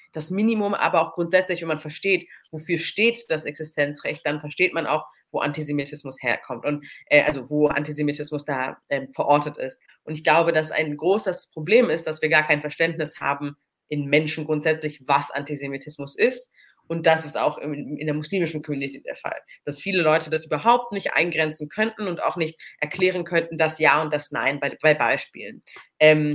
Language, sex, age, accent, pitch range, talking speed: German, female, 30-49, German, 150-180 Hz, 185 wpm